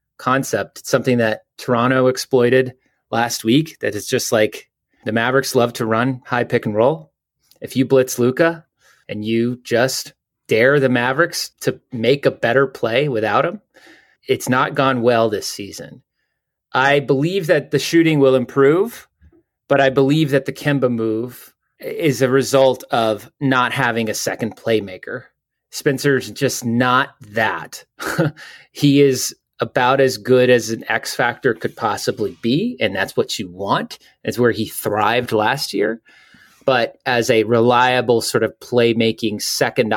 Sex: male